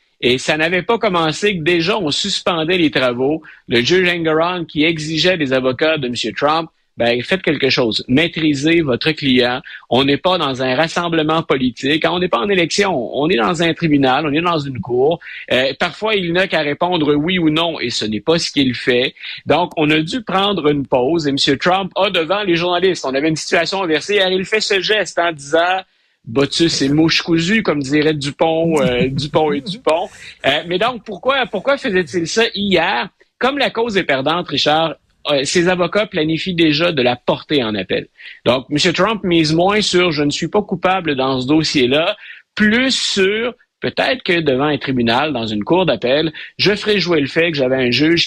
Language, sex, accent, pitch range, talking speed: French, male, Canadian, 140-185 Hz, 205 wpm